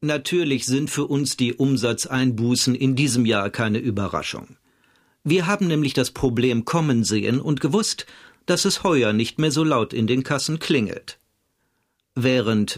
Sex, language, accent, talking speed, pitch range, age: male, German, German, 150 wpm, 125-170 Hz, 50-69